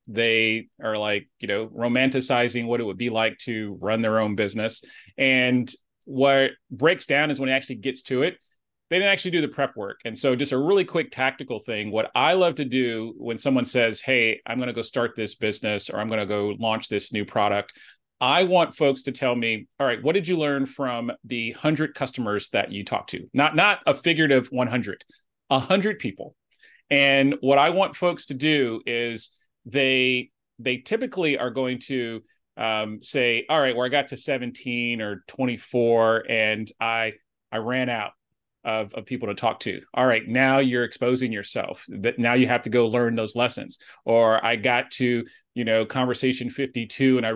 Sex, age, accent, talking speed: male, 30-49, American, 200 wpm